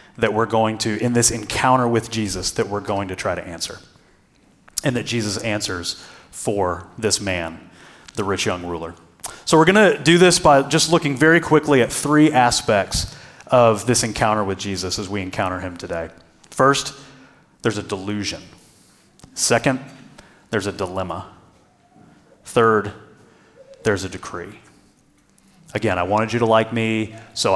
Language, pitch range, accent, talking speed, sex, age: English, 110-170 Hz, American, 150 wpm, male, 30-49